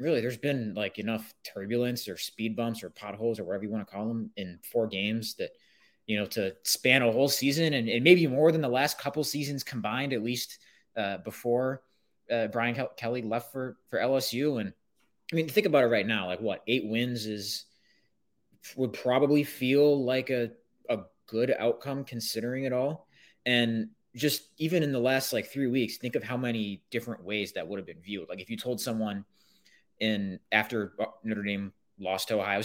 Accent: American